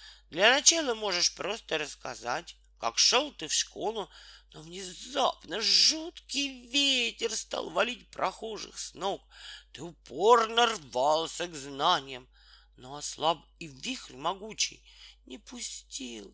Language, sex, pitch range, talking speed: Russian, male, 160-245 Hz, 115 wpm